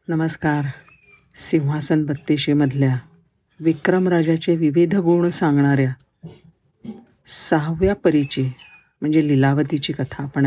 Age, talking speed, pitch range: 50-69, 75 wpm, 140-180 Hz